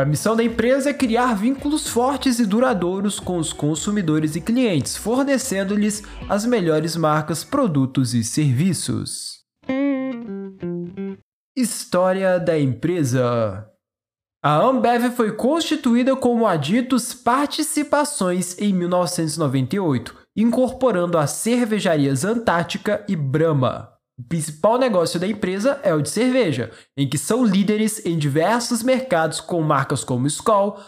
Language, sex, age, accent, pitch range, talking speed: Portuguese, male, 20-39, Brazilian, 160-230 Hz, 115 wpm